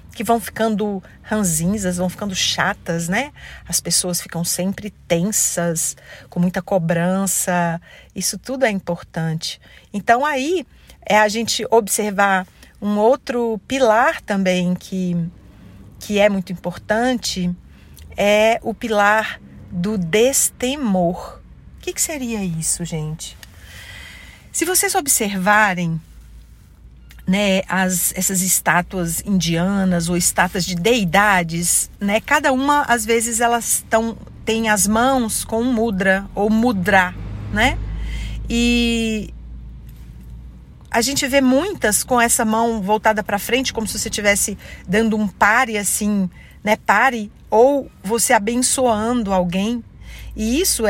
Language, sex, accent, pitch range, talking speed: Portuguese, female, Brazilian, 180-230 Hz, 120 wpm